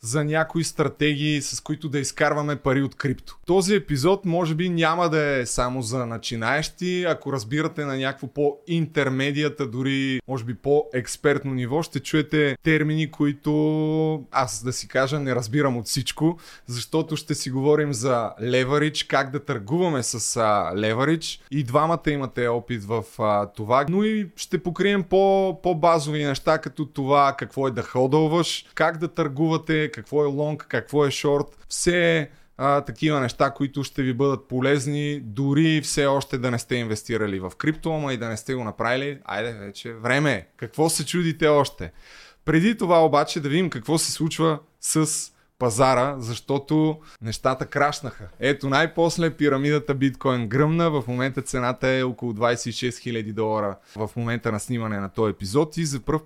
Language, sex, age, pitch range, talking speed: Bulgarian, male, 20-39, 125-155 Hz, 160 wpm